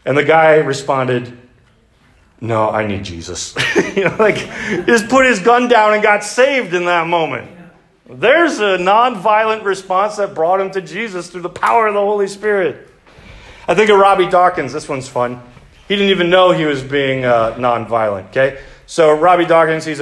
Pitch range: 130-200 Hz